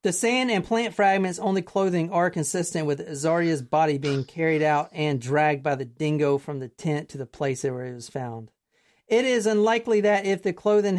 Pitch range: 145-185 Hz